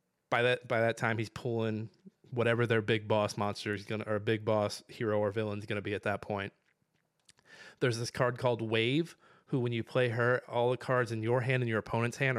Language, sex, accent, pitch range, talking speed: English, male, American, 110-130 Hz, 225 wpm